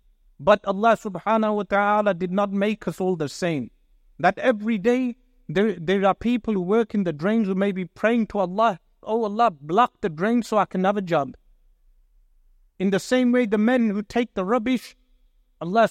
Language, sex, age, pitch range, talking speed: English, male, 50-69, 175-220 Hz, 195 wpm